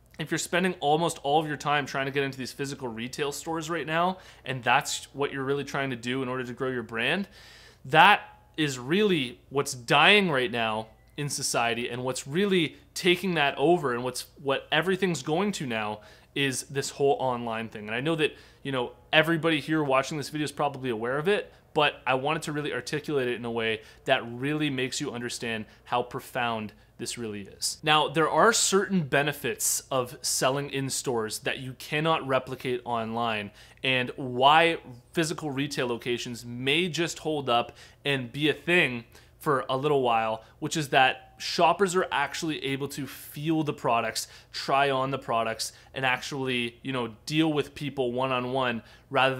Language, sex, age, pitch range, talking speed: English, male, 30-49, 120-150 Hz, 185 wpm